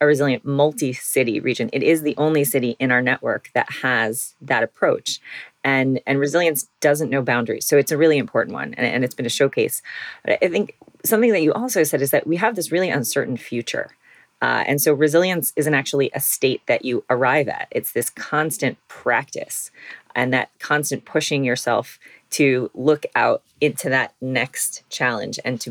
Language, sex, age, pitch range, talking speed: English, female, 30-49, 125-150 Hz, 185 wpm